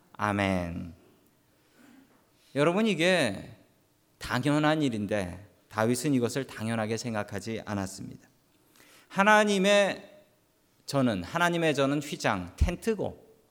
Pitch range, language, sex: 115-180 Hz, Korean, male